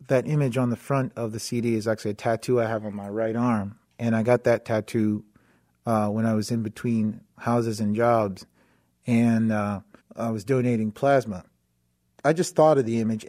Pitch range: 110-135 Hz